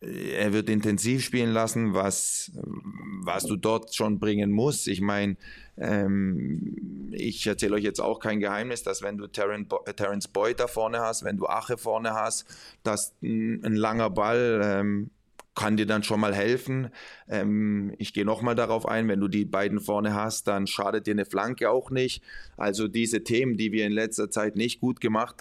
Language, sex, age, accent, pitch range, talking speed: German, male, 20-39, German, 100-110 Hz, 175 wpm